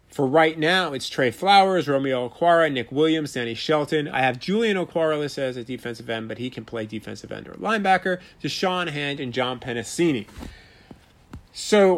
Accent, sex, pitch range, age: American, male, 125-160 Hz, 30-49